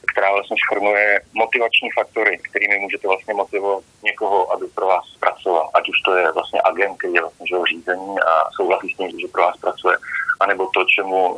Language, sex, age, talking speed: Slovak, male, 30-49, 185 wpm